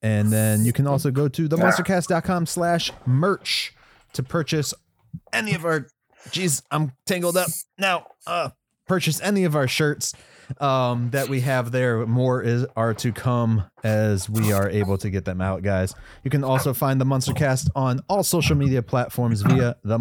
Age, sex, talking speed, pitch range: 30-49, male, 170 wpm, 100-140 Hz